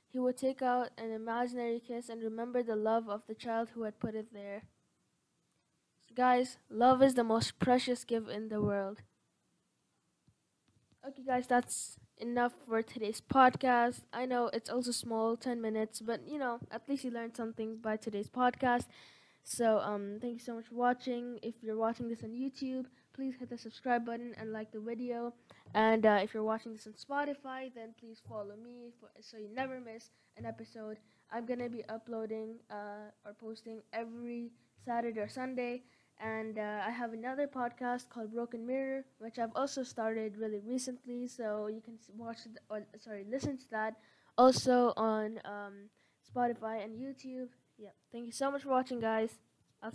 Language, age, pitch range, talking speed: English, 10-29, 220-245 Hz, 180 wpm